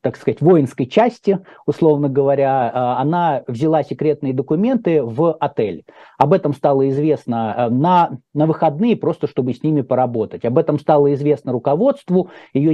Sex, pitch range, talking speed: male, 125-165 Hz, 140 wpm